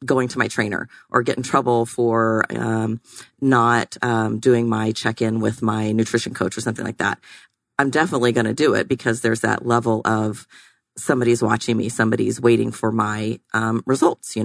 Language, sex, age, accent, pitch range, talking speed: English, female, 30-49, American, 115-125 Hz, 185 wpm